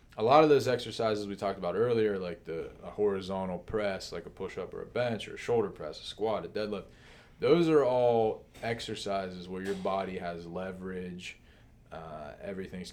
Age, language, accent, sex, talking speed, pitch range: 20-39, English, American, male, 180 wpm, 90-115 Hz